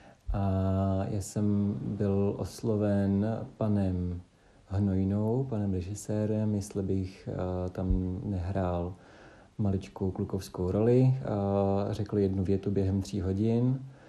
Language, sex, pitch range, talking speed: Czech, male, 100-110 Hz, 100 wpm